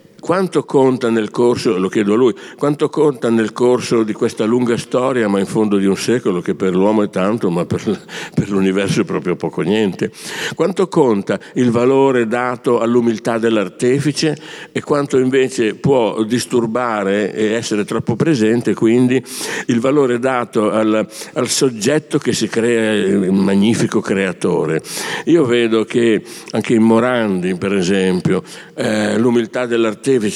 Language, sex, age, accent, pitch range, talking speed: Italian, male, 60-79, native, 105-130 Hz, 150 wpm